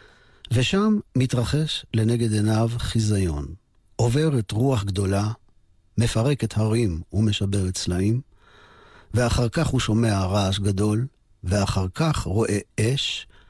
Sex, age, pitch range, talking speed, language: male, 50-69, 100-120 Hz, 100 wpm, Hebrew